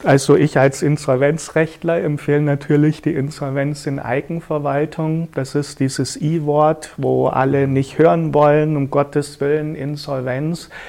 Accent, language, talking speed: German, German, 125 wpm